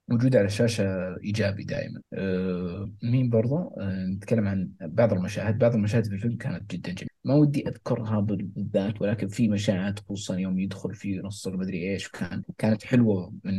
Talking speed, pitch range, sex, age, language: 160 wpm, 100-120 Hz, male, 30-49, Arabic